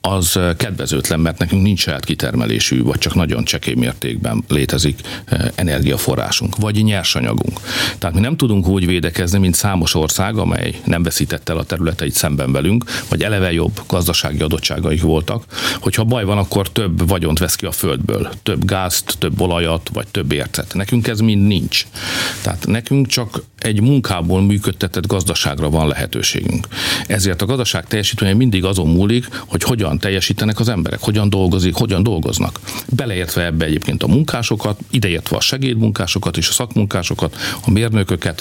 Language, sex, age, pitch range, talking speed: Hungarian, male, 50-69, 85-110 Hz, 145 wpm